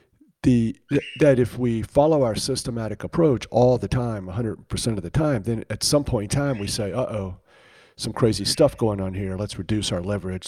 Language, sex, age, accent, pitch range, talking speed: English, male, 50-69, American, 95-120 Hz, 195 wpm